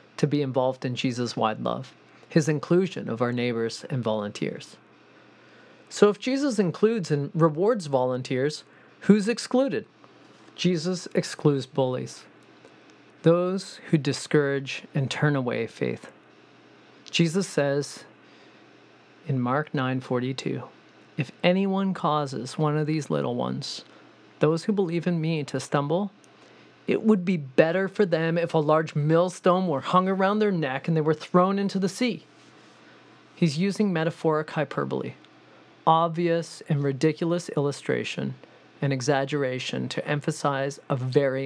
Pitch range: 140-180 Hz